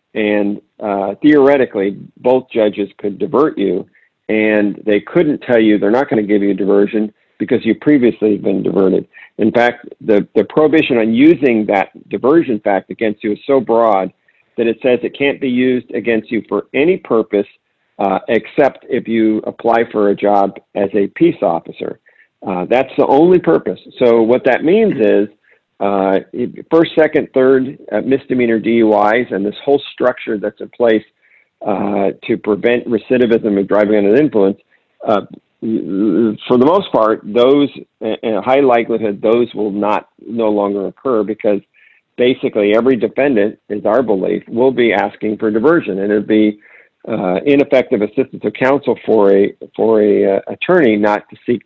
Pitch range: 105-125 Hz